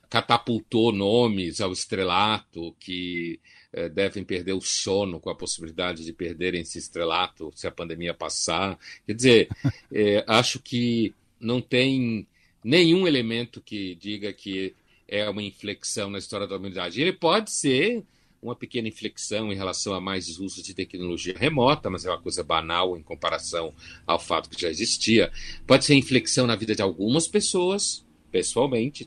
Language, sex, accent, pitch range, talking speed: Portuguese, male, Brazilian, 95-135 Hz, 155 wpm